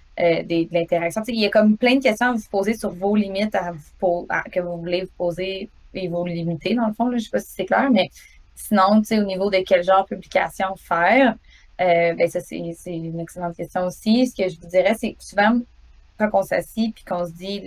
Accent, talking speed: Canadian, 260 wpm